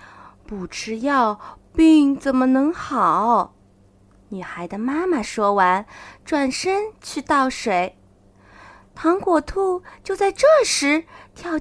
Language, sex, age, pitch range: Chinese, female, 20-39, 225-360 Hz